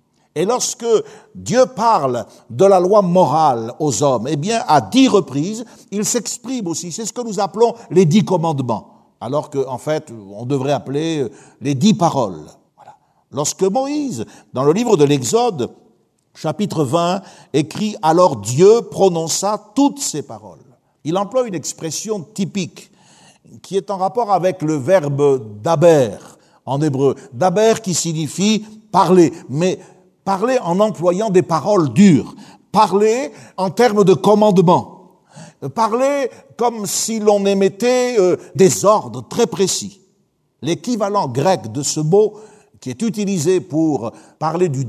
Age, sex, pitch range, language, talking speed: 60-79, male, 150-210 Hz, French, 150 wpm